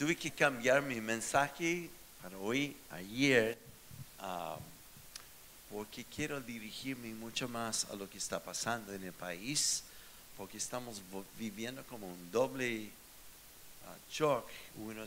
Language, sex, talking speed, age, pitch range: Spanish, male, 125 wpm, 50-69, 100-125 Hz